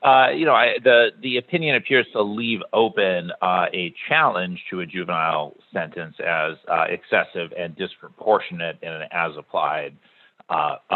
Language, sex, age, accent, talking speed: English, male, 40-59, American, 155 wpm